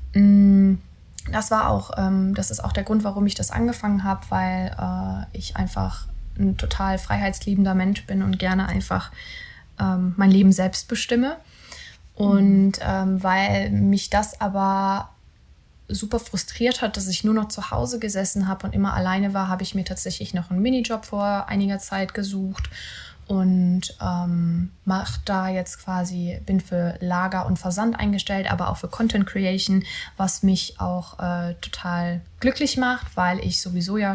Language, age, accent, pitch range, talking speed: German, 20-39, German, 180-200 Hz, 155 wpm